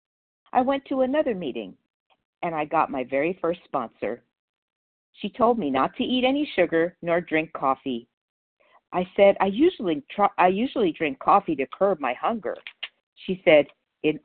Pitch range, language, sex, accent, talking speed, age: 140-185 Hz, English, female, American, 165 wpm, 50-69